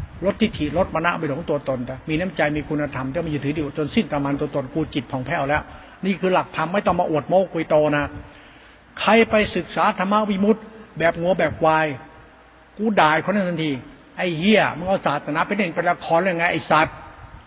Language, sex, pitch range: Thai, male, 160-205 Hz